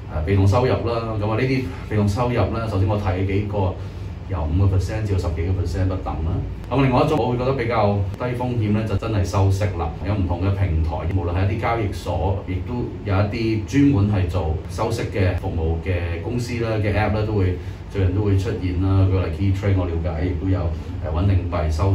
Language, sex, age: Chinese, male, 30-49